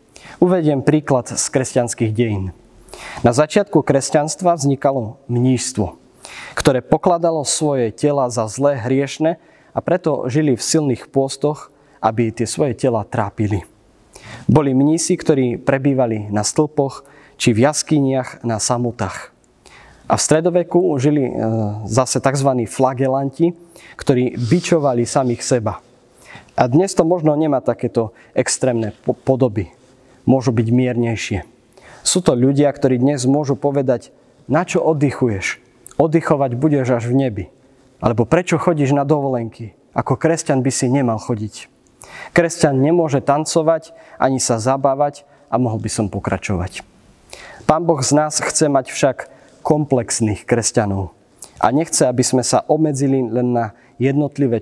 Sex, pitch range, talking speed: male, 120-150 Hz, 125 wpm